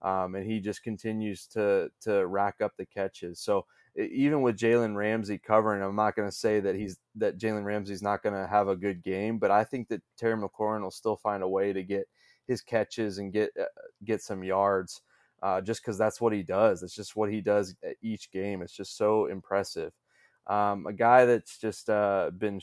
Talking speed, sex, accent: 215 wpm, male, American